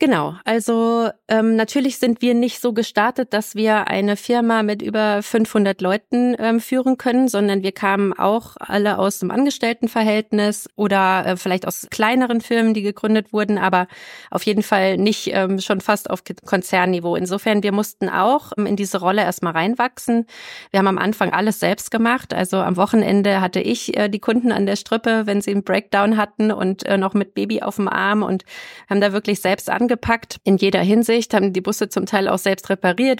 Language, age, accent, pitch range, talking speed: German, 30-49, German, 190-220 Hz, 195 wpm